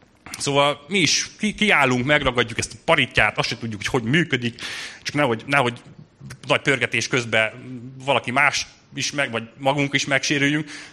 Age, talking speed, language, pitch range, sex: 30-49, 155 wpm, Hungarian, 115-140 Hz, male